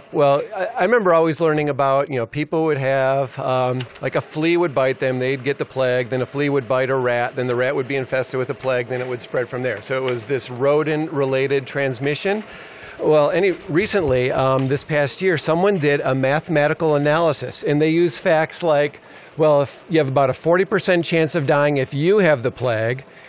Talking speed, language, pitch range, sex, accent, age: 215 wpm, English, 130-150 Hz, male, American, 40-59